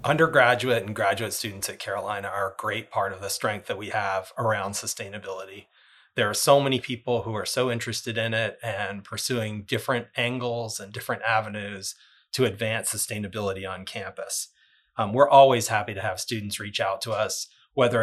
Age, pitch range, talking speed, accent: 30-49, 105-120 Hz, 175 wpm, American